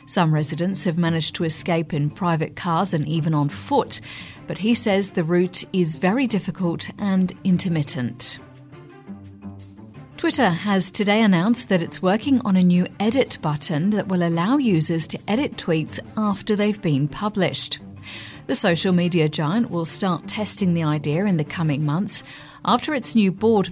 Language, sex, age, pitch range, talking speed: English, female, 50-69, 155-210 Hz, 160 wpm